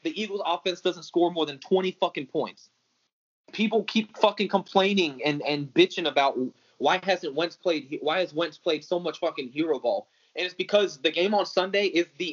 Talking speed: 195 wpm